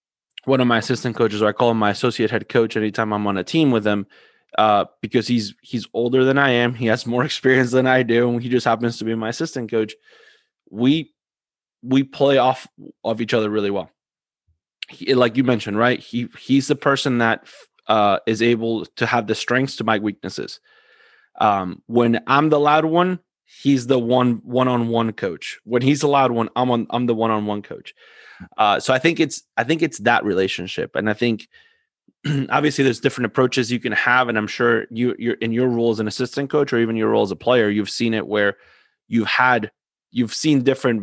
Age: 20-39